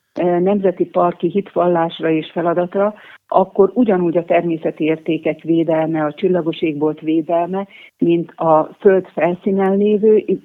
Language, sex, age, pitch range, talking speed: Hungarian, female, 60-79, 160-190 Hz, 115 wpm